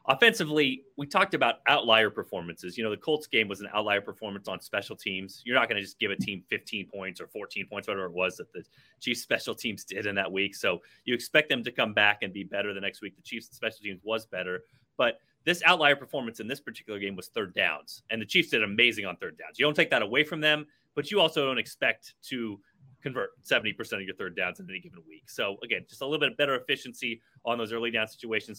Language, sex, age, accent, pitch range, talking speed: English, male, 30-49, American, 100-130 Hz, 250 wpm